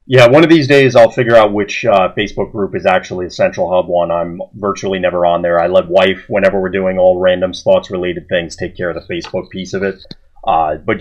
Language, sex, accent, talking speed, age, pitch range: English, male, American, 240 wpm, 30-49, 90-120 Hz